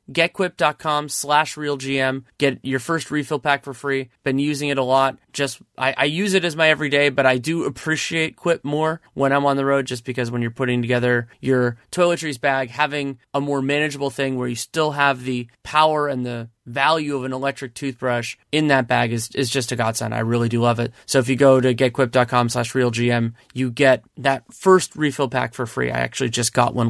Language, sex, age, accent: English, male, 30-49, American